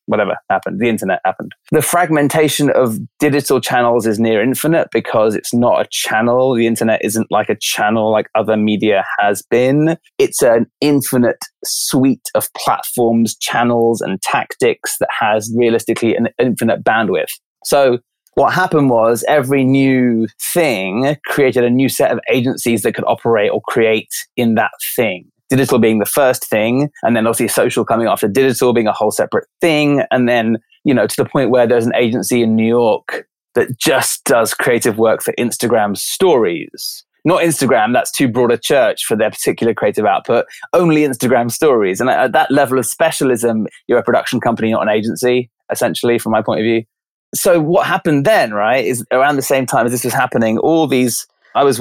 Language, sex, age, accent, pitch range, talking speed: English, male, 20-39, British, 115-135 Hz, 180 wpm